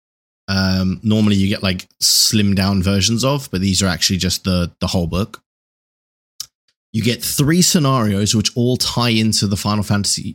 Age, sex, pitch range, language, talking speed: 20-39, male, 90-105 Hz, English, 170 wpm